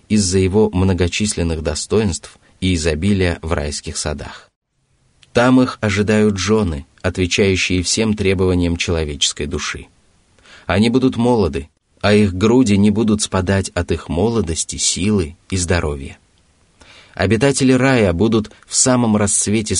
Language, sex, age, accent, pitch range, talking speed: Russian, male, 30-49, native, 85-105 Hz, 120 wpm